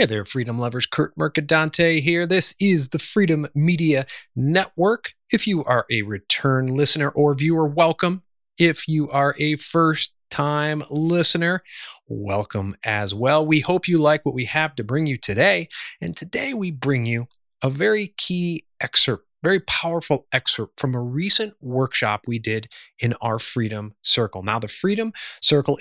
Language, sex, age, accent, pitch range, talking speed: English, male, 30-49, American, 125-170 Hz, 160 wpm